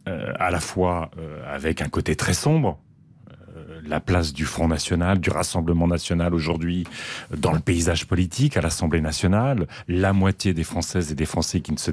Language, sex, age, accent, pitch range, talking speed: French, male, 40-59, French, 90-125 Hz, 185 wpm